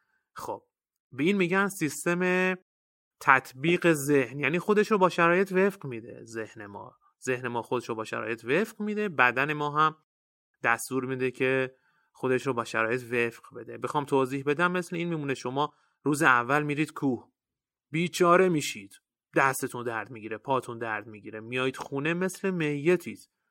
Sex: male